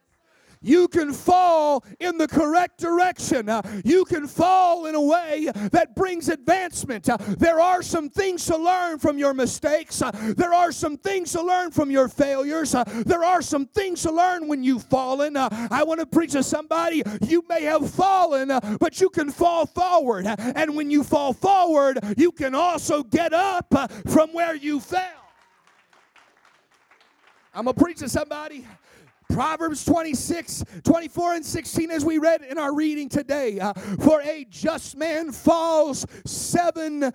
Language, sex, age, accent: English, male, 40-59, American